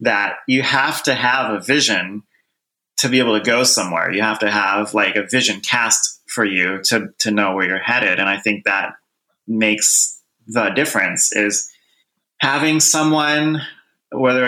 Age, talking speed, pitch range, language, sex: 30-49, 165 wpm, 100-125 Hz, English, male